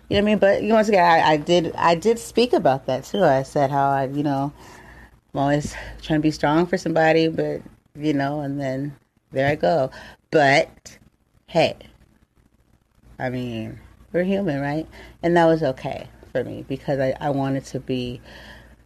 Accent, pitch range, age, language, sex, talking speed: American, 135-160 Hz, 30-49, English, female, 190 wpm